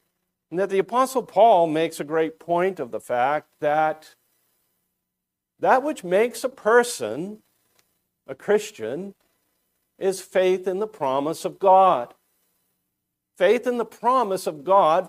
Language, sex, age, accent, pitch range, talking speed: English, male, 50-69, American, 140-195 Hz, 130 wpm